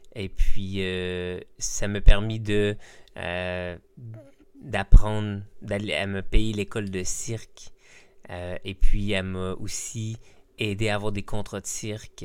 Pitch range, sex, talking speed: 95-115 Hz, male, 140 wpm